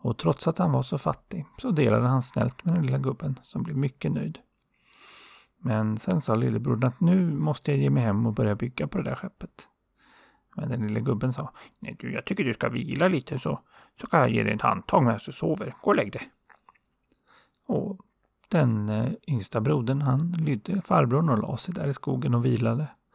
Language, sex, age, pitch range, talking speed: Swedish, male, 30-49, 115-160 Hz, 205 wpm